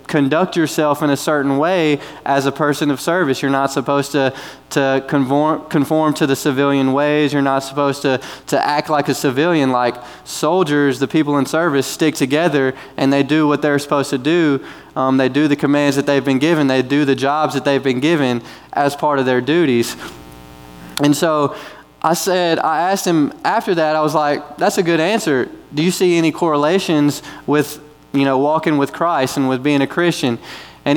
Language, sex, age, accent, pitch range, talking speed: English, male, 20-39, American, 140-165 Hz, 200 wpm